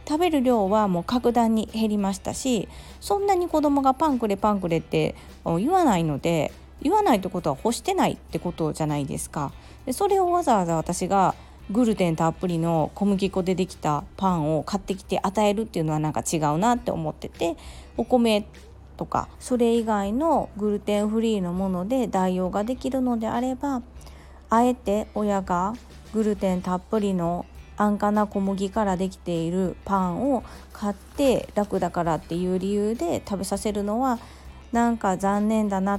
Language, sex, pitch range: Japanese, female, 180-235 Hz